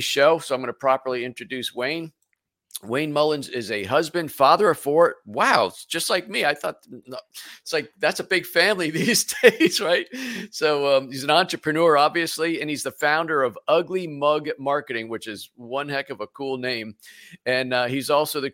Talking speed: 190 wpm